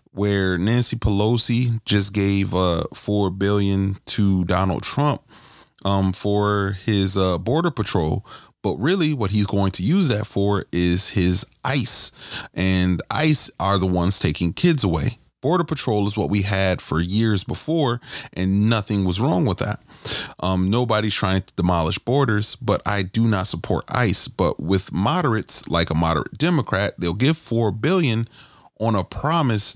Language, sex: English, male